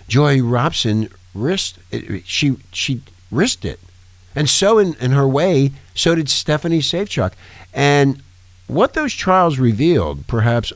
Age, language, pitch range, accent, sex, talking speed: 50-69, English, 90-140 Hz, American, male, 135 wpm